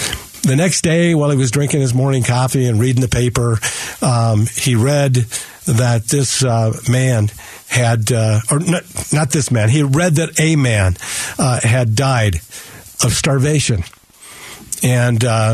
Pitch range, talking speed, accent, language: 115-140 Hz, 150 wpm, American, English